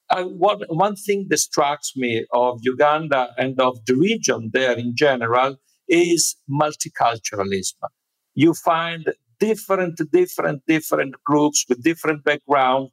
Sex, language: male, English